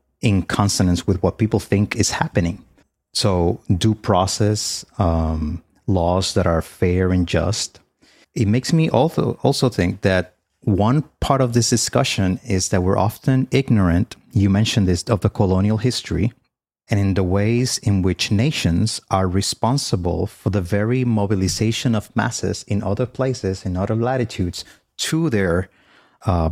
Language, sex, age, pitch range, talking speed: English, male, 30-49, 90-110 Hz, 150 wpm